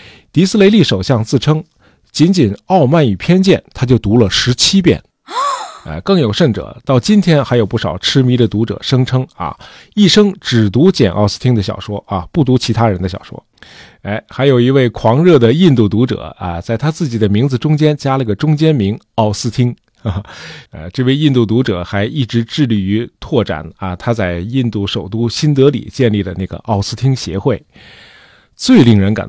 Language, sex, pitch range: Chinese, male, 105-145 Hz